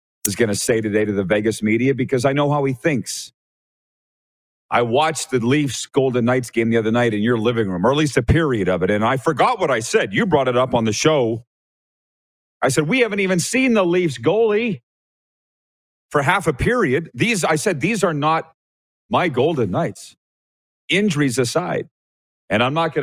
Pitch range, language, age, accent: 100-135 Hz, English, 40-59, American